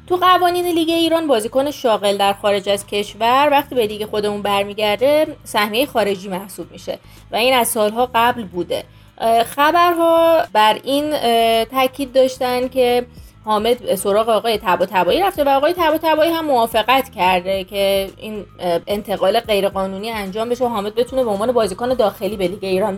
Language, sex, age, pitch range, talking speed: Persian, female, 30-49, 205-280 Hz, 155 wpm